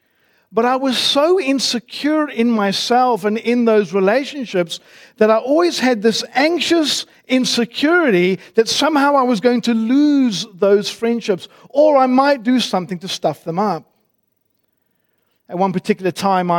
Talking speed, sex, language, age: 145 wpm, male, English, 50-69